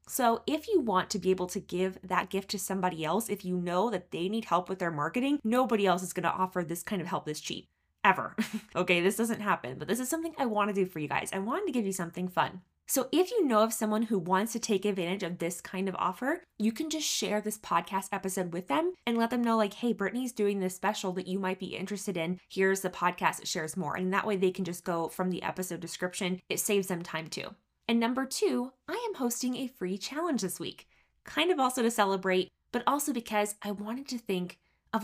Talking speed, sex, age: 250 wpm, female, 20-39